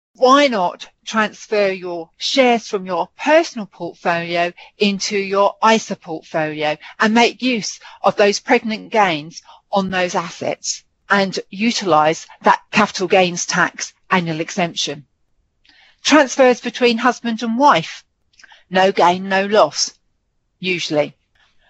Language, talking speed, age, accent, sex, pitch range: English, 115 wpm, 40-59, British, female, 190-265 Hz